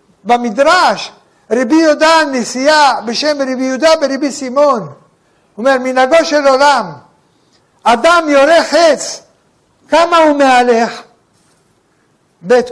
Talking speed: 100 wpm